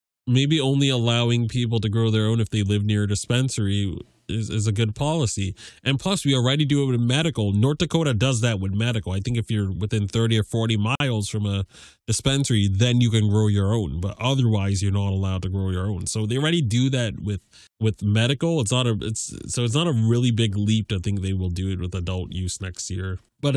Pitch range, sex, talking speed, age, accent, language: 105-125 Hz, male, 230 wpm, 20-39, American, English